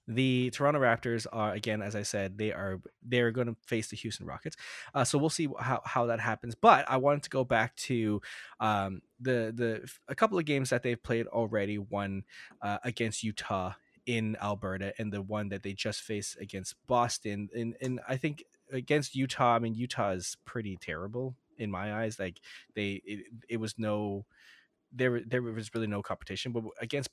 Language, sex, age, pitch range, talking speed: English, male, 20-39, 100-125 Hz, 190 wpm